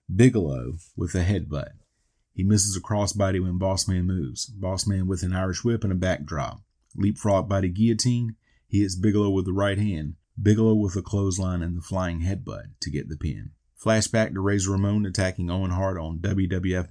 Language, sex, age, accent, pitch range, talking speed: English, male, 30-49, American, 85-100 Hz, 180 wpm